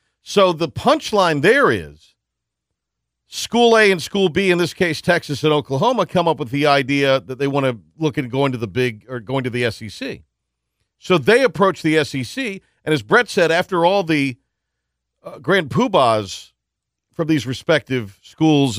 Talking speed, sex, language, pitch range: 175 wpm, male, English, 110-155 Hz